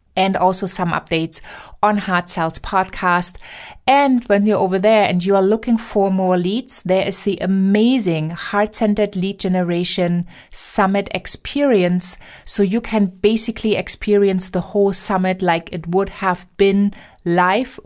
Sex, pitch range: female, 180-220 Hz